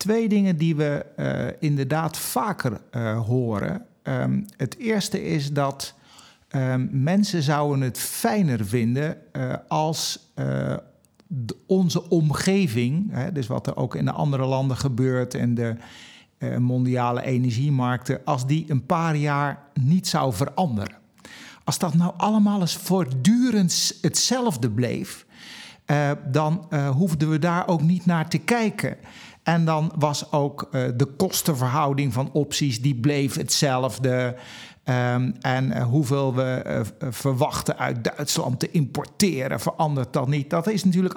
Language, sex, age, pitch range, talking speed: Dutch, male, 50-69, 130-170 Hz, 135 wpm